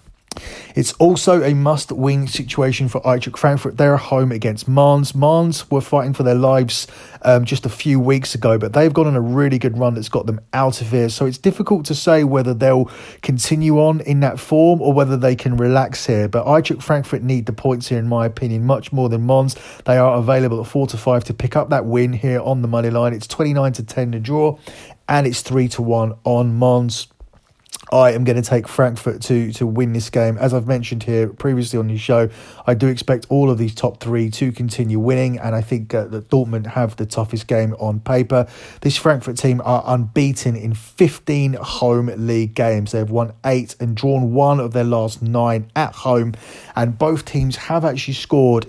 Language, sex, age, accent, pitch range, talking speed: English, male, 30-49, British, 120-135 Hz, 205 wpm